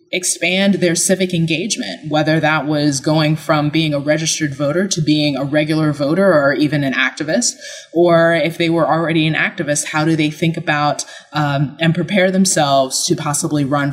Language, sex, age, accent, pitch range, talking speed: English, female, 20-39, American, 150-180 Hz, 175 wpm